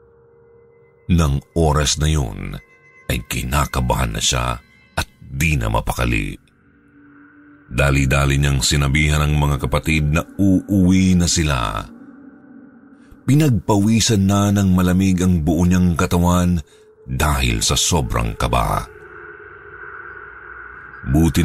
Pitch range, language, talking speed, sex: 75-105 Hz, Filipino, 95 wpm, male